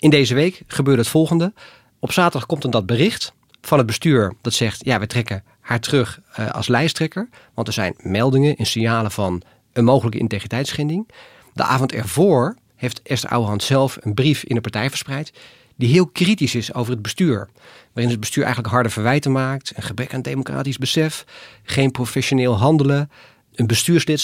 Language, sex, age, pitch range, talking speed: Dutch, male, 40-59, 115-145 Hz, 180 wpm